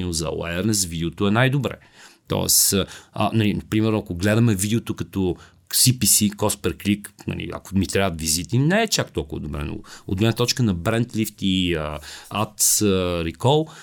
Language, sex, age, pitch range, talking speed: Bulgarian, male, 40-59, 100-120 Hz, 155 wpm